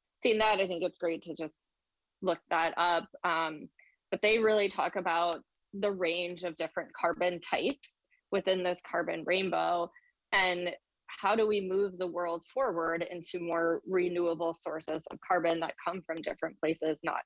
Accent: American